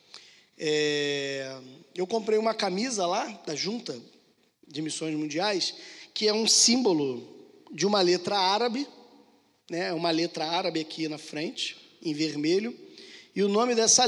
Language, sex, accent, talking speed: Portuguese, male, Brazilian, 135 wpm